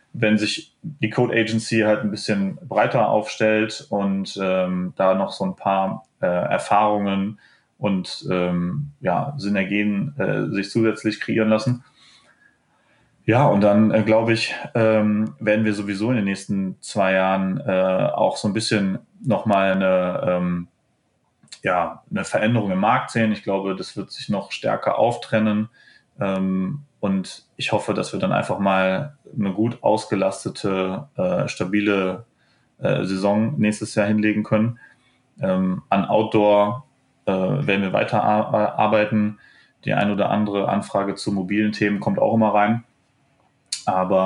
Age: 30-49